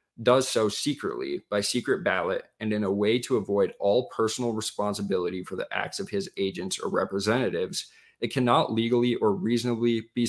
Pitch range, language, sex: 100-125 Hz, English, male